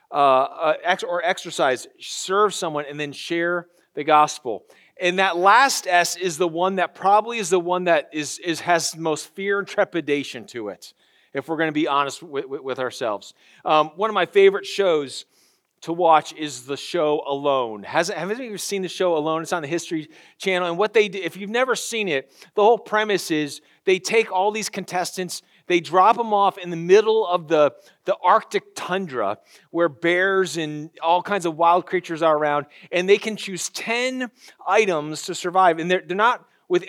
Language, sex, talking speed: English, male, 195 wpm